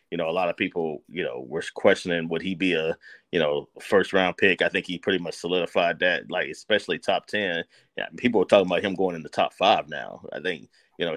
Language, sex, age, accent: English, male, 30-49, American